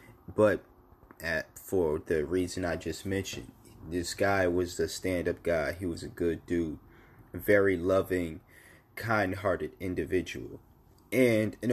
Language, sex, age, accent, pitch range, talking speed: English, male, 30-49, American, 90-110 Hz, 125 wpm